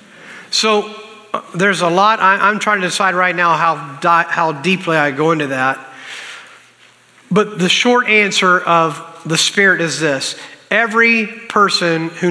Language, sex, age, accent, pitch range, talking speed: English, male, 50-69, American, 165-200 Hz, 155 wpm